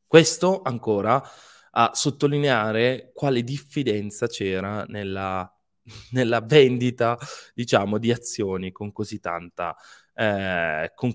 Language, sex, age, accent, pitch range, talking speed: Italian, male, 20-39, native, 100-135 Hz, 95 wpm